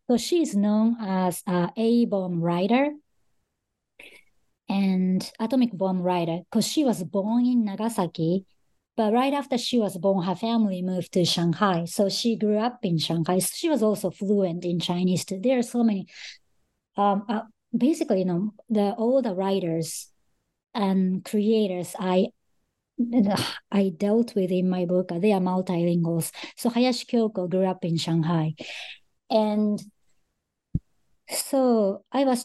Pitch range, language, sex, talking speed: 175-225 Hz, English, male, 145 wpm